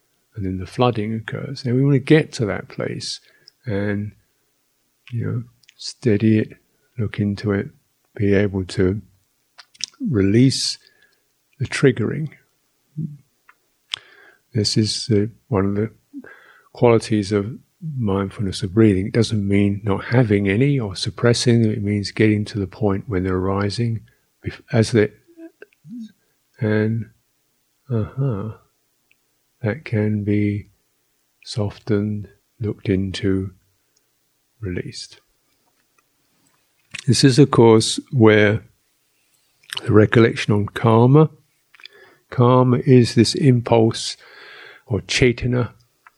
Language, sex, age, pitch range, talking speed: English, male, 50-69, 100-130 Hz, 105 wpm